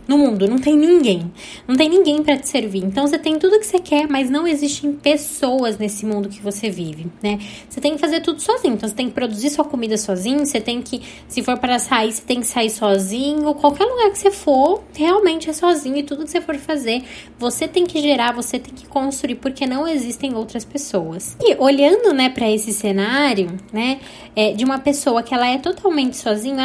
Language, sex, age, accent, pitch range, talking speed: Portuguese, female, 10-29, Brazilian, 225-295 Hz, 220 wpm